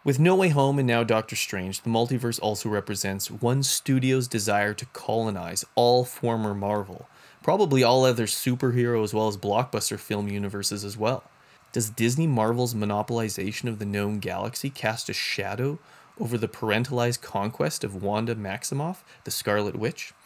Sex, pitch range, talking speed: male, 100-125 Hz, 155 wpm